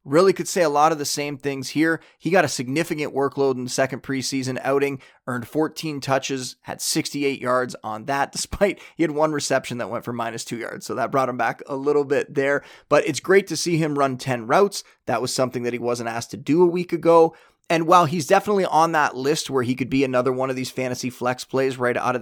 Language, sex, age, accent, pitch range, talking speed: English, male, 30-49, American, 125-150 Hz, 245 wpm